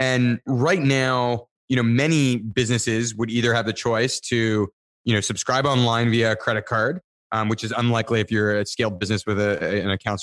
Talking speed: 200 wpm